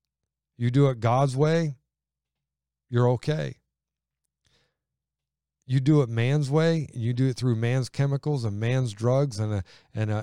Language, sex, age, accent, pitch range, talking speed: English, male, 40-59, American, 110-130 Hz, 130 wpm